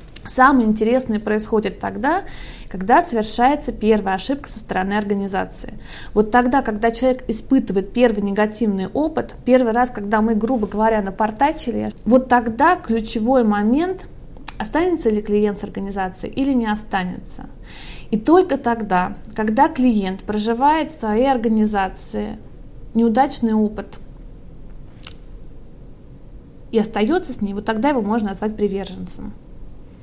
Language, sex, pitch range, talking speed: Russian, female, 205-260 Hz, 120 wpm